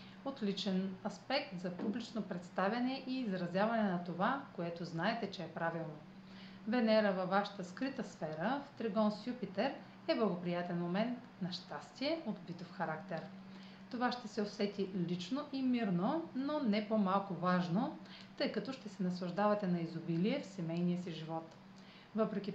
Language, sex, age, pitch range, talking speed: Bulgarian, female, 40-59, 180-220 Hz, 145 wpm